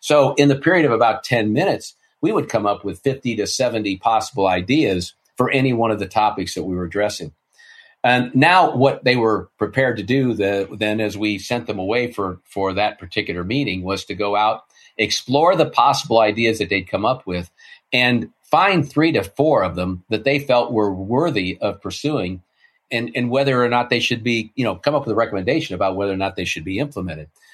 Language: English